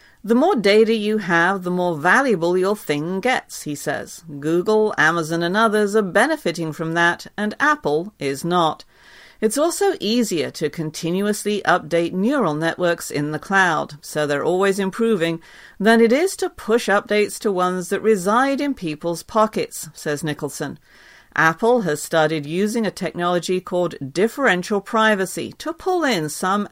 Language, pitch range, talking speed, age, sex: English, 160-225 Hz, 155 wpm, 50-69, female